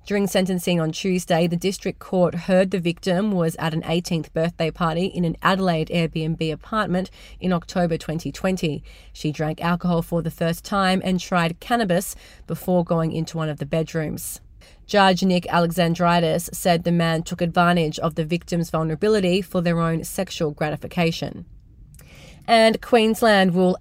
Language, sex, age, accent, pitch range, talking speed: English, female, 30-49, Australian, 165-195 Hz, 155 wpm